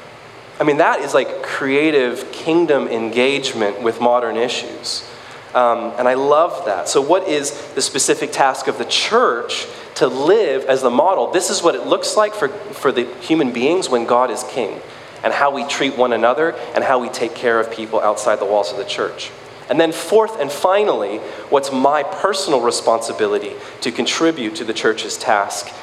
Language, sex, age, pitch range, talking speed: English, male, 20-39, 125-190 Hz, 185 wpm